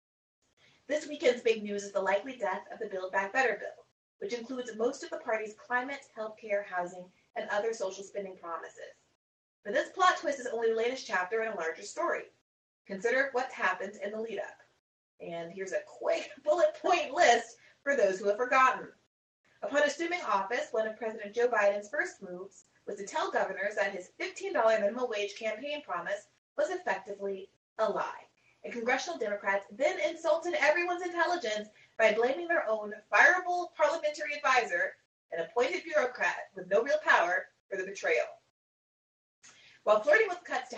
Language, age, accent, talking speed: English, 30-49, American, 170 wpm